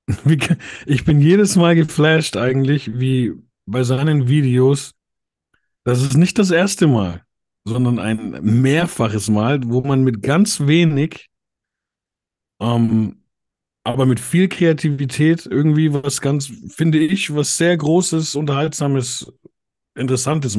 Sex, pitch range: male, 105-150 Hz